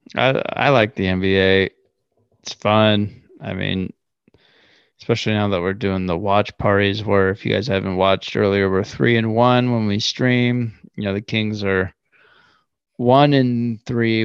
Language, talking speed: English, 165 wpm